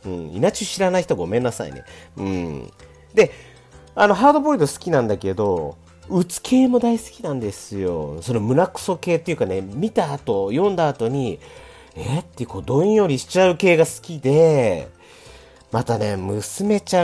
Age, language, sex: 40-59, Japanese, male